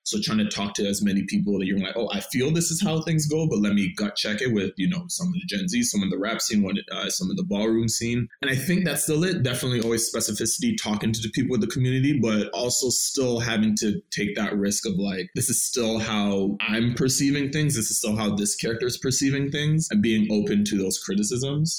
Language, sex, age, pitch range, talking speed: English, male, 20-39, 105-160 Hz, 250 wpm